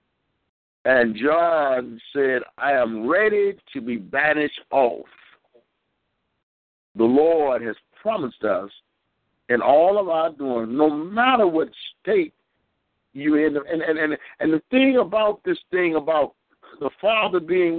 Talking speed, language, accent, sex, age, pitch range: 130 wpm, English, American, male, 60-79, 160-235 Hz